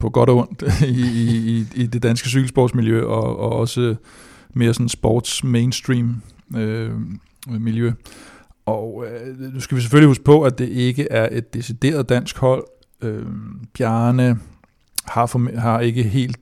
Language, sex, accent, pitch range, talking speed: Danish, male, native, 115-125 Hz, 145 wpm